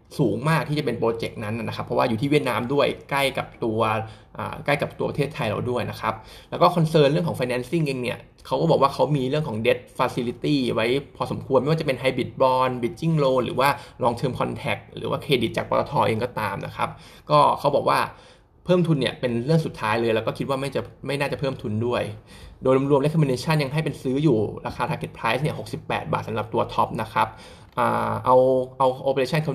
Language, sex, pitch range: Thai, male, 120-145 Hz